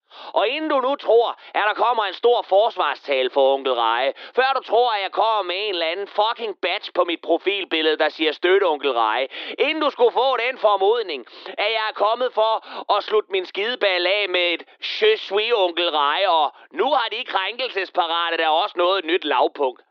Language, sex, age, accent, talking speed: Danish, male, 30-49, native, 195 wpm